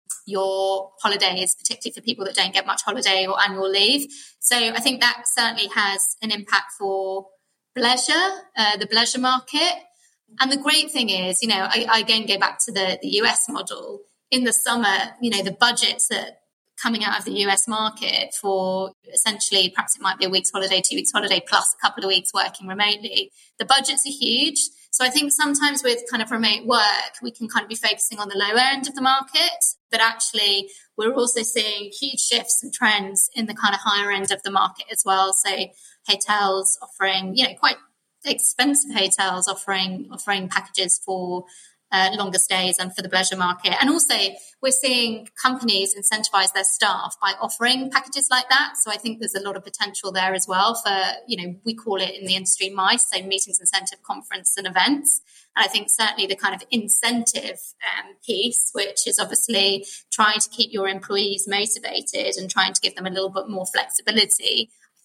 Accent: British